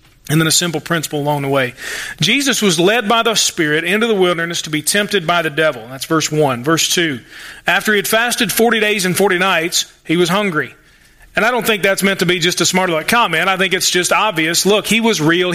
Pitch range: 170-220 Hz